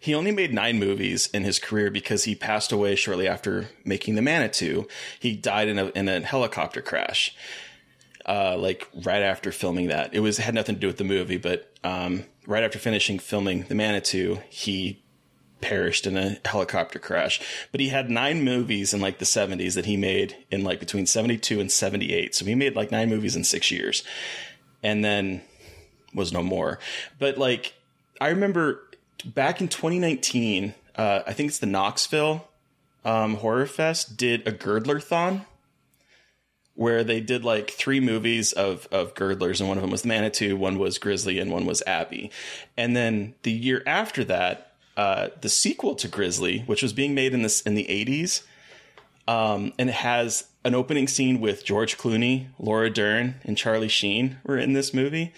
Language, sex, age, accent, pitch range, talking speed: English, male, 30-49, American, 100-130 Hz, 180 wpm